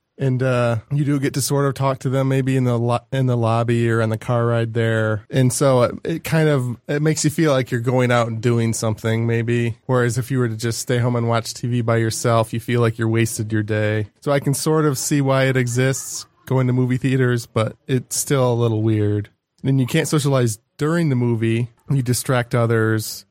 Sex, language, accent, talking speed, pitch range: male, English, American, 235 wpm, 115-130 Hz